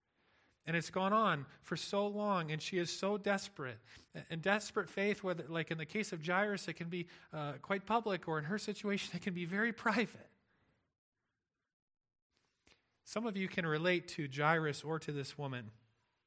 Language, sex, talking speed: English, male, 175 wpm